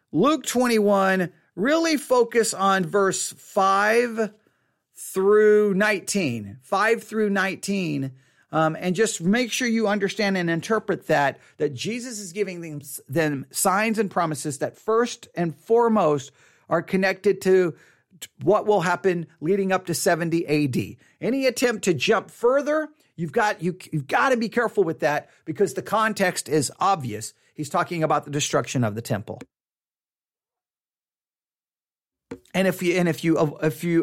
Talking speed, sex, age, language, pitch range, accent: 140 wpm, male, 40-59, English, 155-215 Hz, American